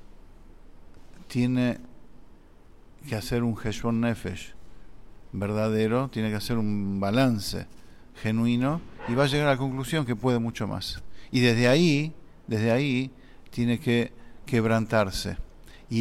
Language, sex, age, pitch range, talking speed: English, male, 50-69, 110-130 Hz, 125 wpm